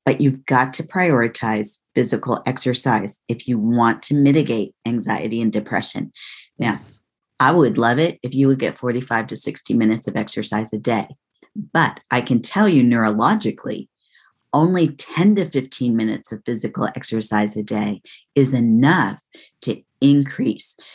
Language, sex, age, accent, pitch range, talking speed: English, female, 40-59, American, 115-140 Hz, 150 wpm